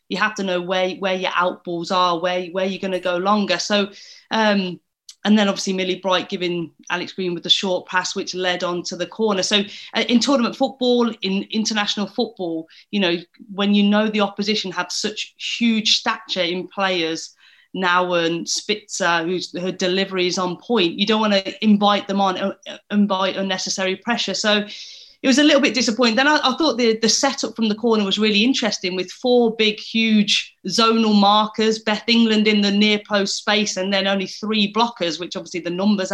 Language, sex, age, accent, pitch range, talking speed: English, female, 30-49, British, 185-225 Hz, 195 wpm